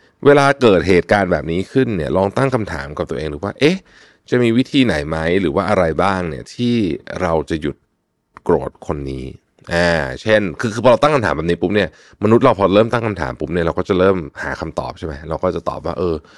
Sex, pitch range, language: male, 75-110 Hz, Thai